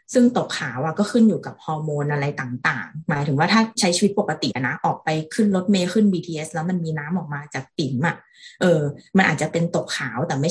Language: Thai